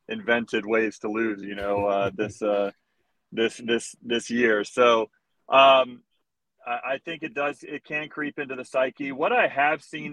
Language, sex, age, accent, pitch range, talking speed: English, male, 30-49, American, 110-130 Hz, 170 wpm